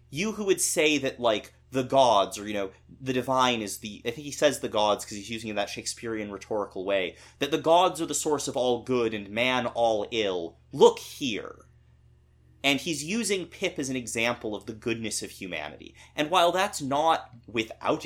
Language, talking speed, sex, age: English, 205 wpm, male, 30-49